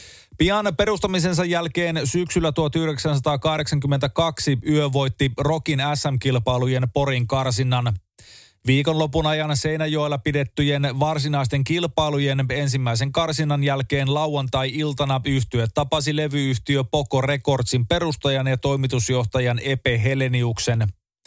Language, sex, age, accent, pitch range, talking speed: Finnish, male, 30-49, native, 130-155 Hz, 85 wpm